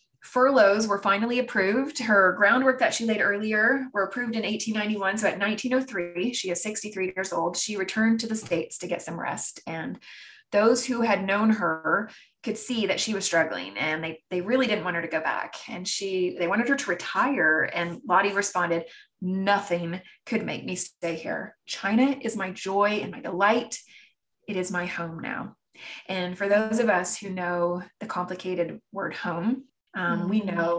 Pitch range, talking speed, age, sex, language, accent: 180-225 Hz, 185 wpm, 20-39, female, English, American